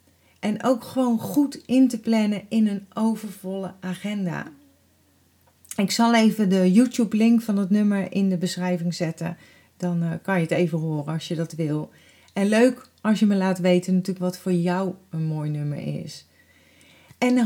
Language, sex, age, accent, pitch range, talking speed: Dutch, female, 40-59, Dutch, 185-230 Hz, 170 wpm